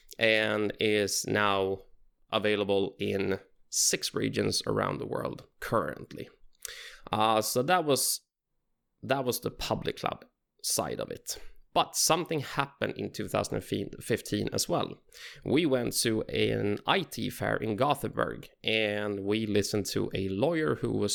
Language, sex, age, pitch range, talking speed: English, male, 20-39, 100-125 Hz, 130 wpm